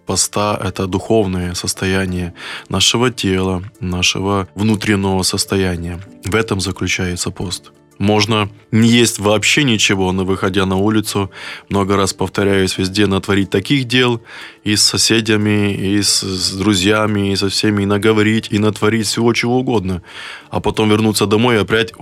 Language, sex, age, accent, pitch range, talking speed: Russian, male, 20-39, native, 95-105 Hz, 140 wpm